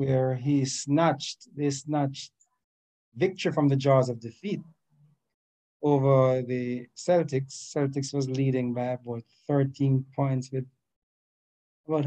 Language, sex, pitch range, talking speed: English, male, 120-145 Hz, 115 wpm